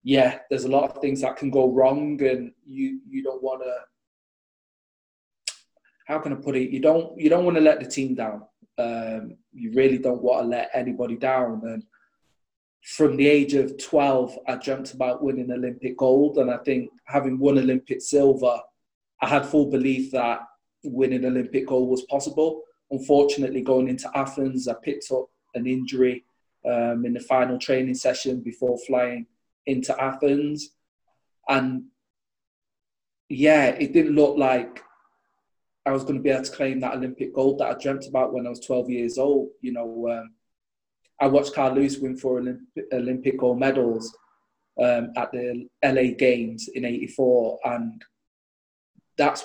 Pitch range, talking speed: 125-140 Hz, 165 wpm